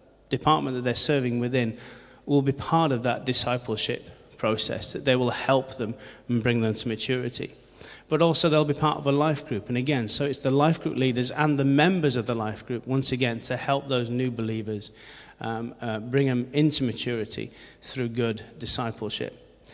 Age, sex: 30-49, male